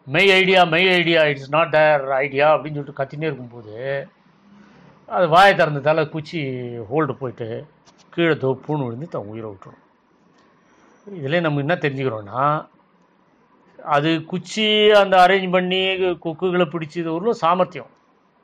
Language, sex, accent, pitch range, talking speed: Tamil, male, native, 145-185 Hz, 125 wpm